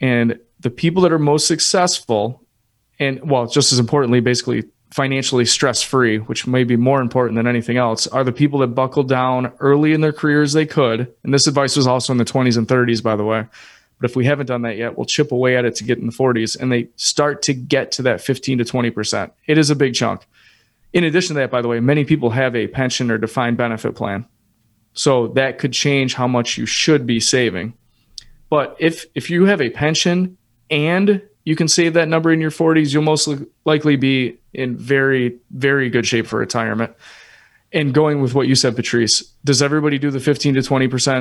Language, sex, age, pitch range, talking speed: English, male, 30-49, 120-145 Hz, 210 wpm